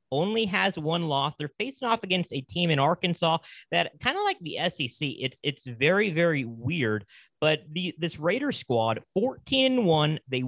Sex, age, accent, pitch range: male, 30-49, American, 120-165 Hz